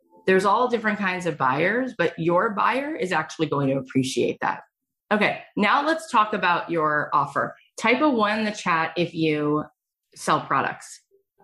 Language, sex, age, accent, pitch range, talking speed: English, female, 30-49, American, 150-190 Hz, 170 wpm